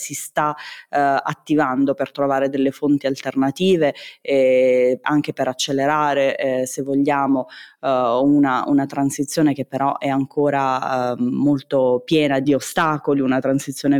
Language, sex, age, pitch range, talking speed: Italian, female, 20-39, 135-150 Hz, 135 wpm